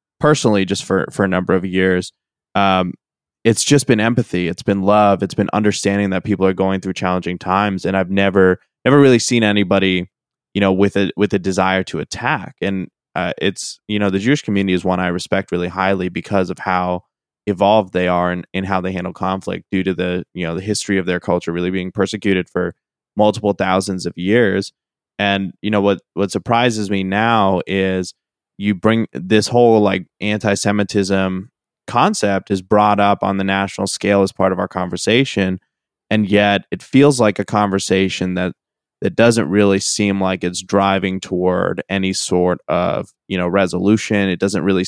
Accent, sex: American, male